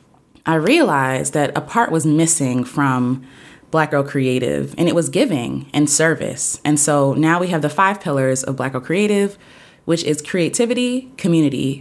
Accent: American